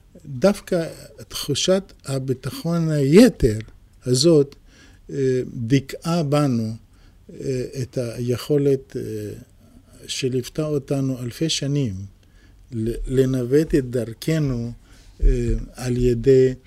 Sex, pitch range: male, 115-145 Hz